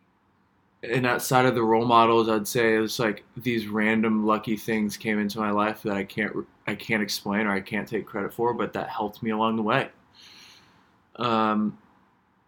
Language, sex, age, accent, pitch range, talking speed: English, male, 20-39, American, 100-120 Hz, 190 wpm